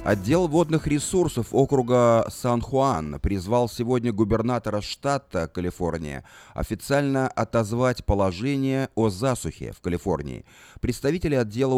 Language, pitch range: Russian, 95-130 Hz